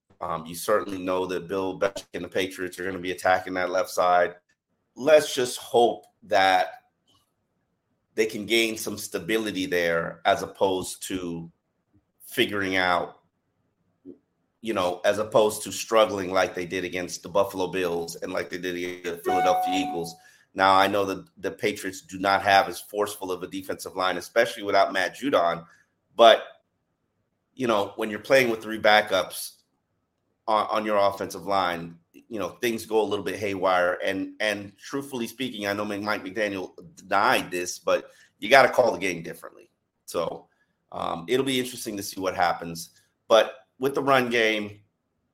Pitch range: 90-110 Hz